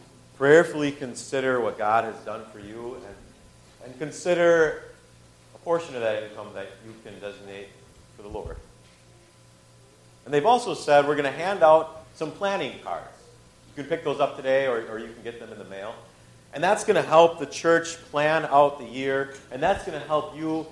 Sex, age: male, 40-59